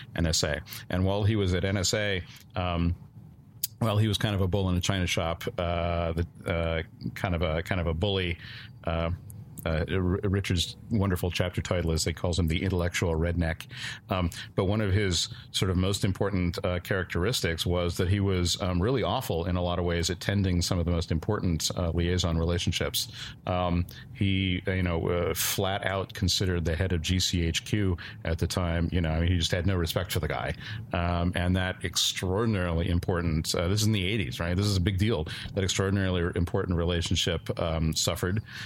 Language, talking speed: English, 190 wpm